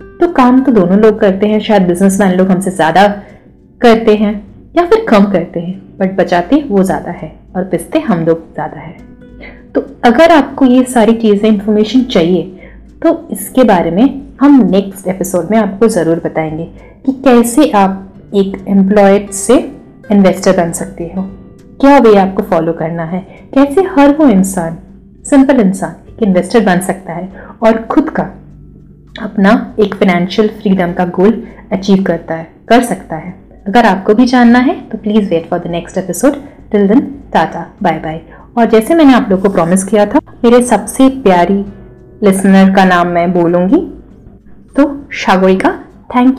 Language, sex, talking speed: Hindi, female, 165 wpm